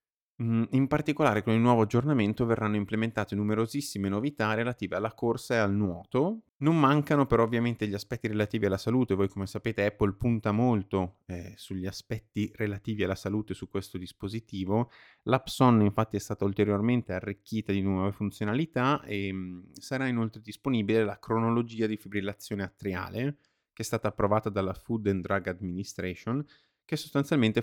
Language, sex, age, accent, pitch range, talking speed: Italian, male, 30-49, native, 95-115 Hz, 150 wpm